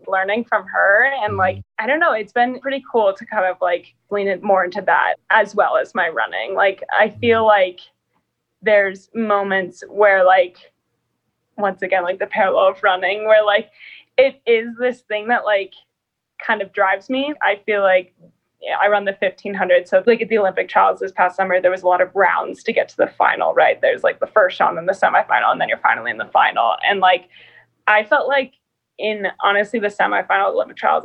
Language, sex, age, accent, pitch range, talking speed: English, female, 20-39, American, 190-235 Hz, 205 wpm